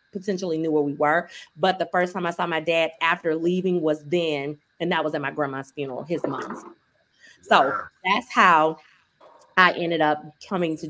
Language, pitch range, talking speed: English, 160-190 Hz, 185 wpm